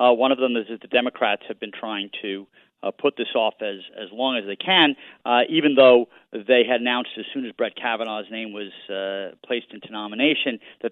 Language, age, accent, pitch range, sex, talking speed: English, 40-59, American, 105-125 Hz, male, 220 wpm